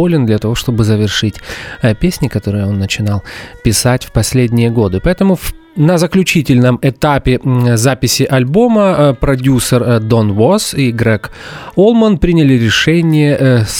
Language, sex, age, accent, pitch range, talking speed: Russian, male, 30-49, native, 115-165 Hz, 135 wpm